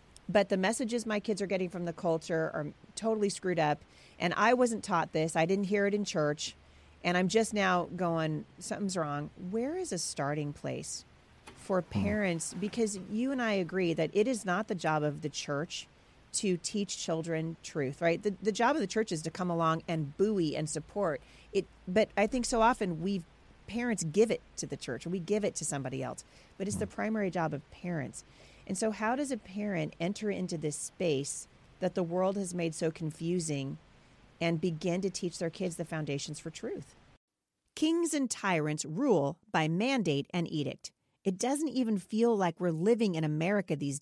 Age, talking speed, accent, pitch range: 40-59, 195 wpm, American, 160-210 Hz